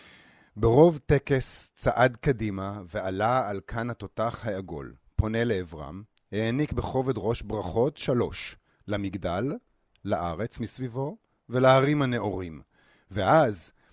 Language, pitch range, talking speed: Hebrew, 100-130 Hz, 95 wpm